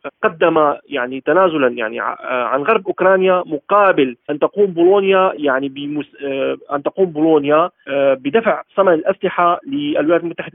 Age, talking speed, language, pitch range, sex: 30-49, 120 wpm, Arabic, 150-195 Hz, male